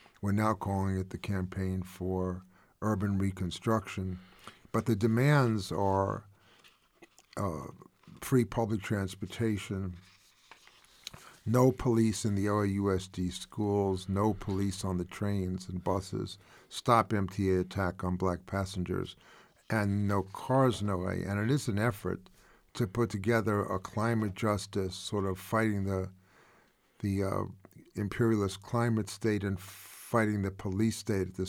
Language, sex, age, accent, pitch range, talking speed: English, male, 50-69, American, 95-110 Hz, 130 wpm